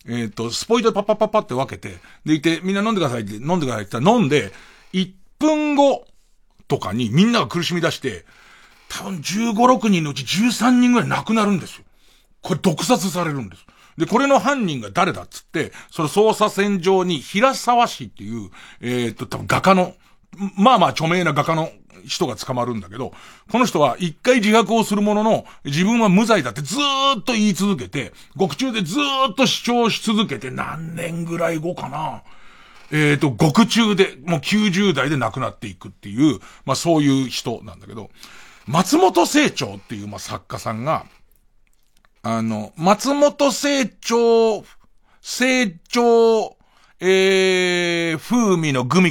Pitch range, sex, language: 135-225 Hz, male, Japanese